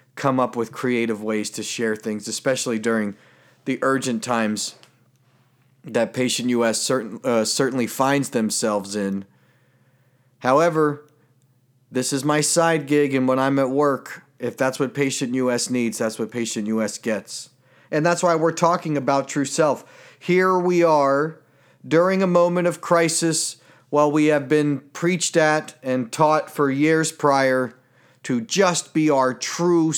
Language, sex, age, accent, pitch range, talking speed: English, male, 40-59, American, 130-160 Hz, 150 wpm